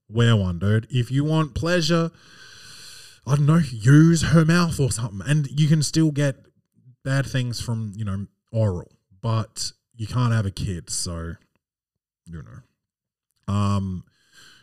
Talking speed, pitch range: 150 wpm, 110-145 Hz